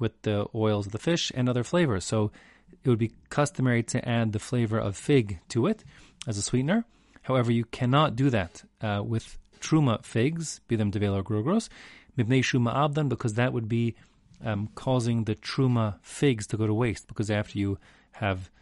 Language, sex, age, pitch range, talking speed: English, male, 30-49, 105-135 Hz, 180 wpm